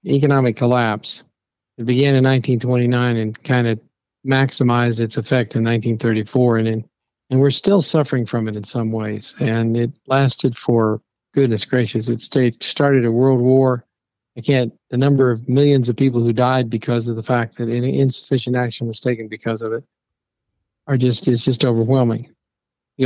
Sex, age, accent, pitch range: male, 50-69, American, 115-130 Hz